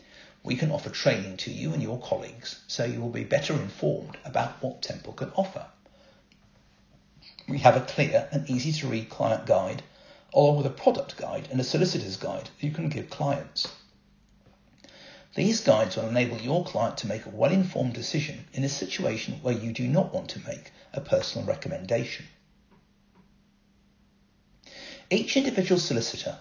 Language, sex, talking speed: English, male, 160 wpm